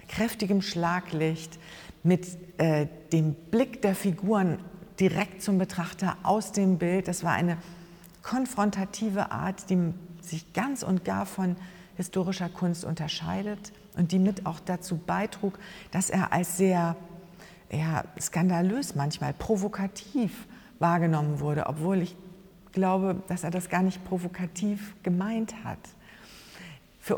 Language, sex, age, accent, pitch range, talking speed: German, female, 50-69, German, 175-200 Hz, 125 wpm